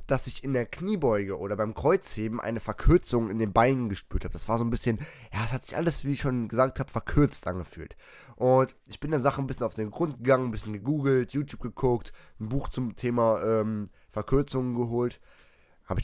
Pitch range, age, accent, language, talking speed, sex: 110-140 Hz, 20-39, German, German, 215 wpm, male